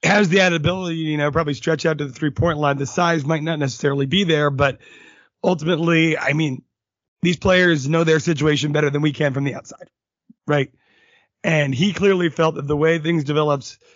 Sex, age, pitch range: male, 30-49, 145-170 Hz